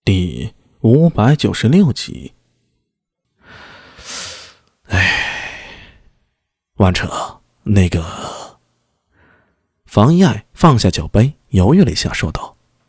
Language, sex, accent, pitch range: Chinese, male, native, 95-145 Hz